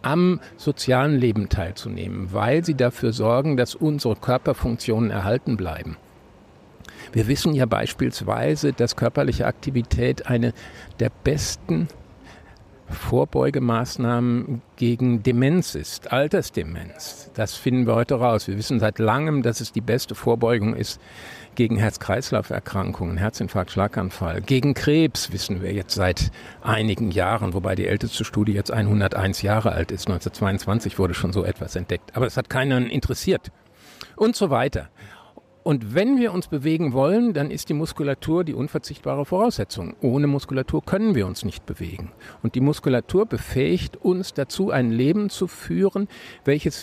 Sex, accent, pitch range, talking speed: male, German, 105-140 Hz, 140 wpm